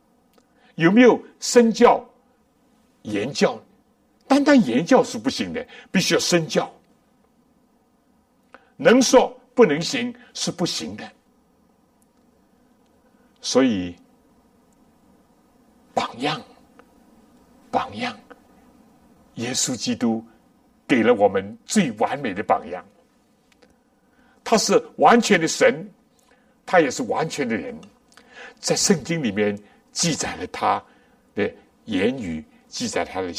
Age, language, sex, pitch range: 60-79, Chinese, male, 245-250 Hz